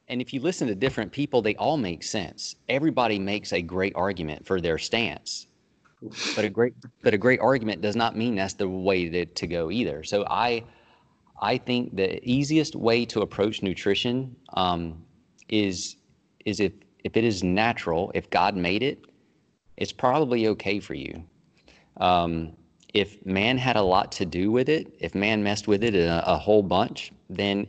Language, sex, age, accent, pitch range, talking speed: Hindi, male, 30-49, American, 90-115 Hz, 180 wpm